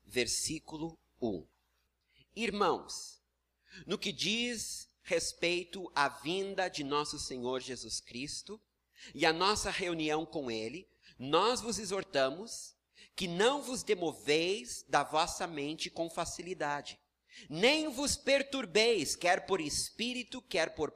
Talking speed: 115 wpm